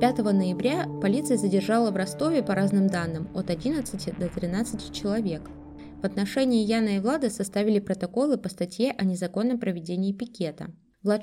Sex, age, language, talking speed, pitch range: female, 20-39, Russian, 150 wpm, 180-230 Hz